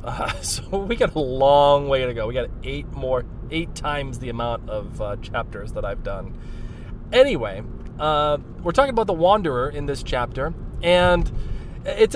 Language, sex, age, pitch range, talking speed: English, male, 20-39, 120-150 Hz, 170 wpm